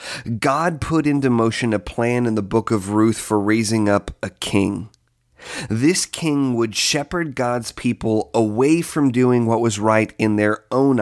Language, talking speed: English, 170 wpm